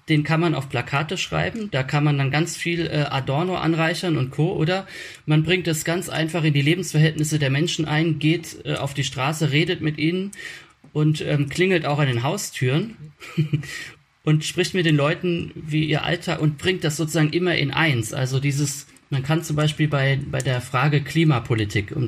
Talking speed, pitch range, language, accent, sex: 185 wpm, 135-165 Hz, German, German, male